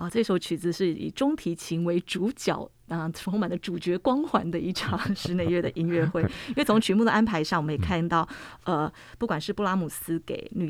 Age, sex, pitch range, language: 30-49, female, 170-225 Hz, Chinese